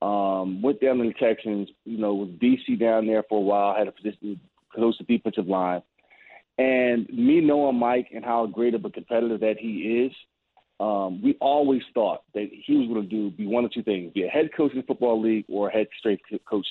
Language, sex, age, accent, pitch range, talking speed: English, male, 30-49, American, 105-125 Hz, 230 wpm